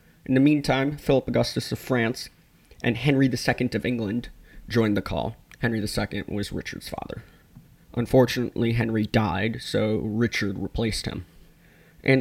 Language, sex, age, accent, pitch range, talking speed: English, male, 20-39, American, 110-135 Hz, 140 wpm